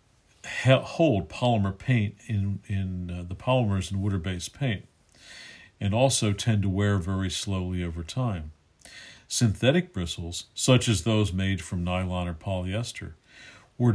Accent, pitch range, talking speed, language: American, 95-115 Hz, 135 wpm, English